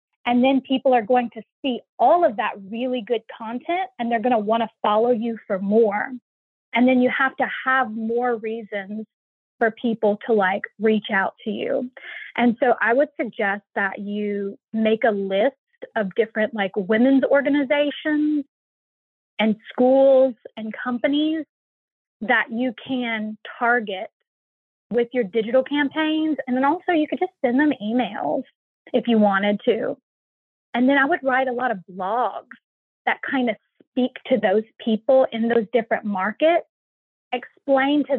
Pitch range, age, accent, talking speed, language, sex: 220-275 Hz, 20-39, American, 160 wpm, English, female